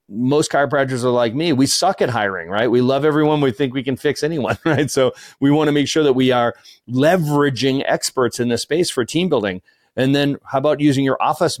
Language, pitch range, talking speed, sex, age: English, 125-155 Hz, 230 wpm, male, 40-59